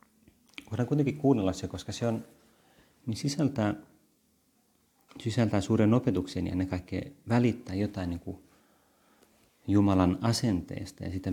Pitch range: 90-110 Hz